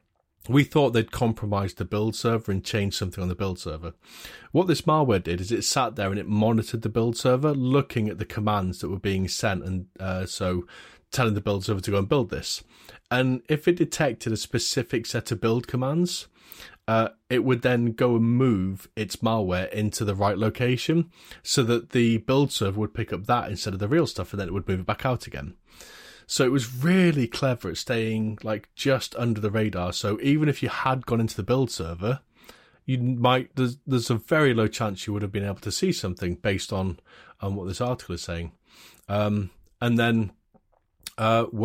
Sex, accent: male, British